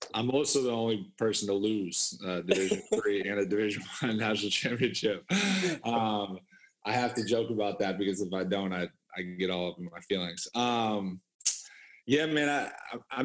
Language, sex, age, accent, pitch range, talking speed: English, male, 20-39, American, 95-115 Hz, 175 wpm